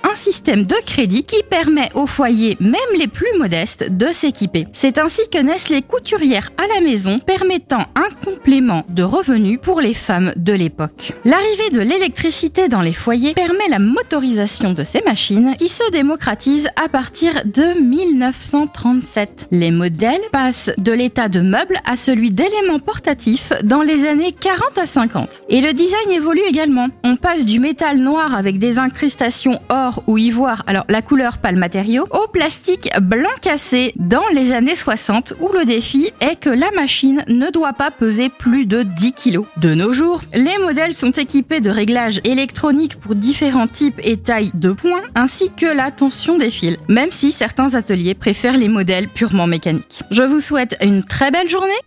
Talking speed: 175 wpm